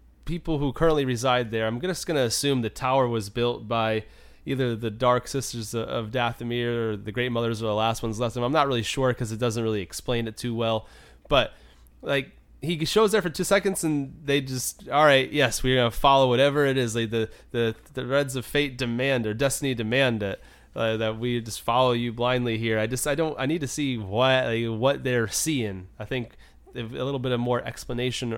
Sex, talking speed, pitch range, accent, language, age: male, 220 wpm, 115-140 Hz, American, English, 30-49